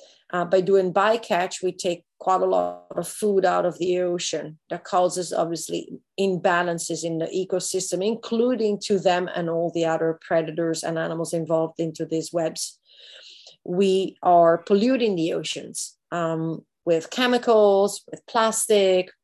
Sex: female